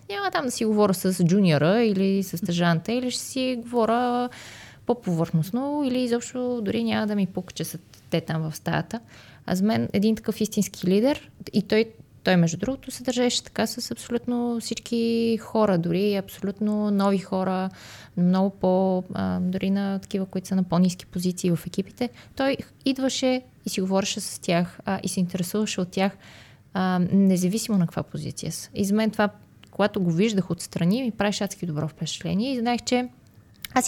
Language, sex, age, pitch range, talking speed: Bulgarian, female, 20-39, 175-215 Hz, 170 wpm